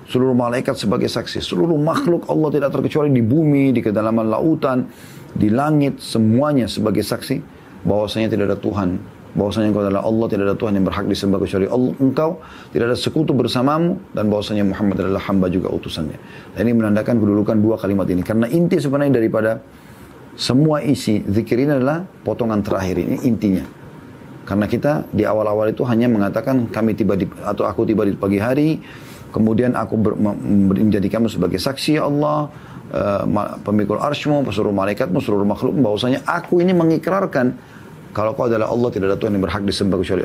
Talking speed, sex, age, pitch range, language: 165 wpm, male, 30-49, 100-130 Hz, Indonesian